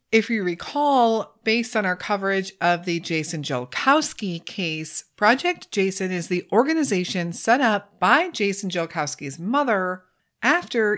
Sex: female